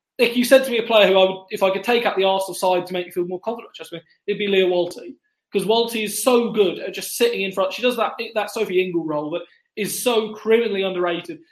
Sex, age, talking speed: male, 20-39, 270 wpm